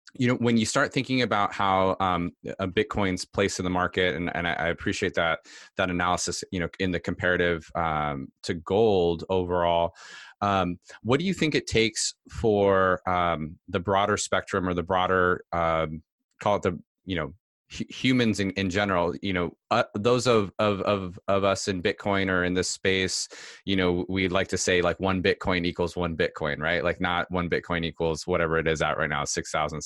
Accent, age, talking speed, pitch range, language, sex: American, 20-39, 195 wpm, 85-100 Hz, English, male